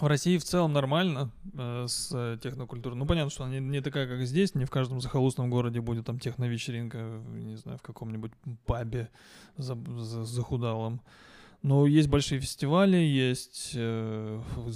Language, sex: English, male